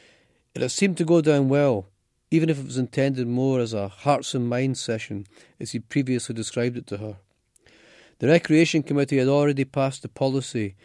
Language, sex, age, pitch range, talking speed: English, male, 30-49, 115-140 Hz, 195 wpm